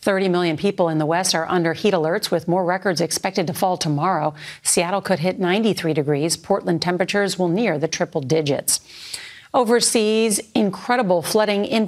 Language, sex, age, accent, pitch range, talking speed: English, female, 50-69, American, 165-210 Hz, 165 wpm